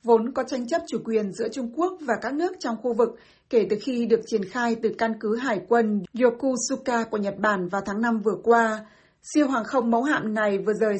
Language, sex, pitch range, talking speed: Vietnamese, female, 215-250 Hz, 235 wpm